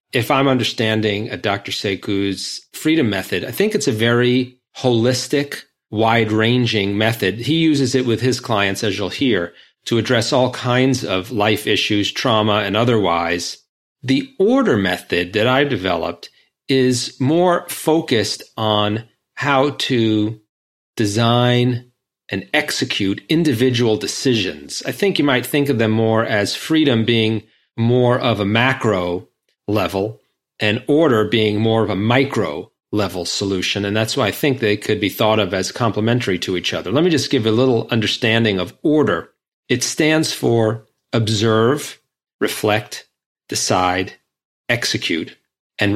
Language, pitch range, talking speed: English, 105-130 Hz, 145 wpm